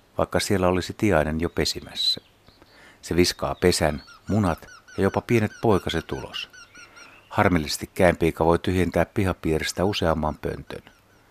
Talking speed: 115 wpm